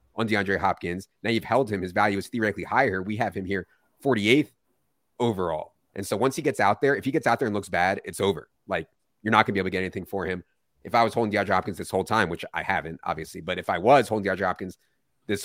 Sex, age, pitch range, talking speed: male, 30-49, 85-100 Hz, 255 wpm